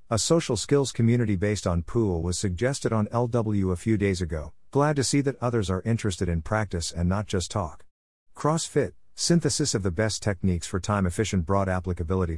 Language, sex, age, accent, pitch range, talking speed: English, male, 50-69, American, 90-120 Hz, 185 wpm